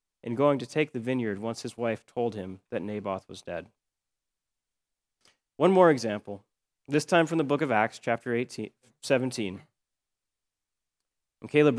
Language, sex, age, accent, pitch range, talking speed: English, male, 30-49, American, 105-140 Hz, 145 wpm